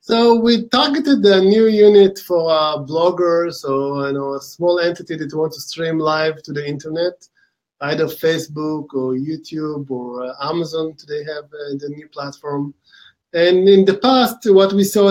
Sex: male